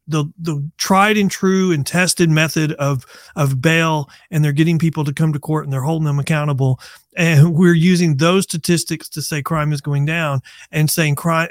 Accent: American